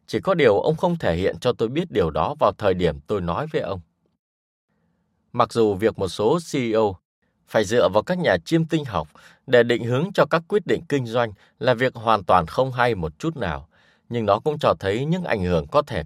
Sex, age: male, 20-39